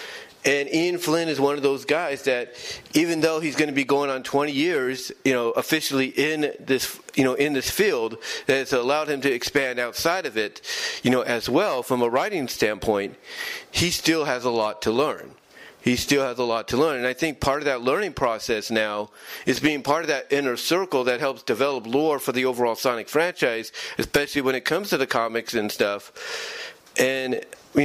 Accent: American